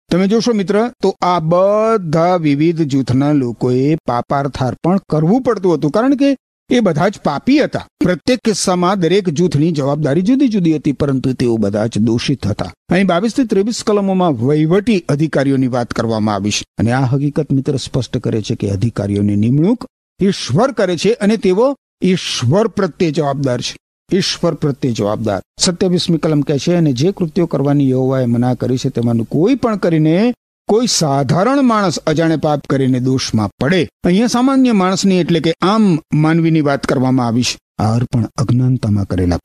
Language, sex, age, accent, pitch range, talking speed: Gujarati, male, 50-69, native, 115-180 Hz, 70 wpm